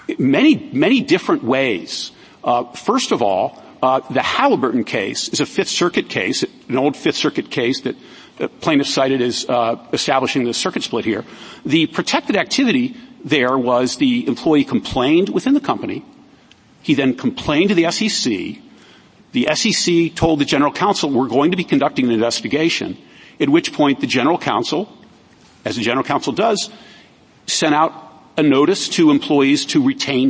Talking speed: 160 wpm